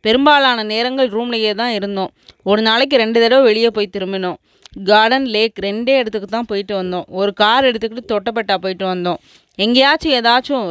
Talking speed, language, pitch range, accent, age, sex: 150 wpm, Tamil, 195-245 Hz, native, 20-39, female